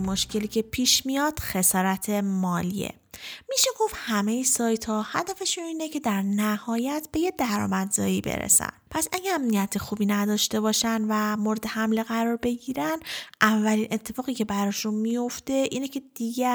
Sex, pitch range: female, 205-245 Hz